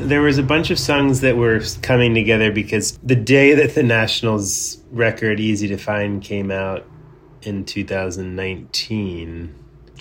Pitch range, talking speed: 90-110 Hz, 145 wpm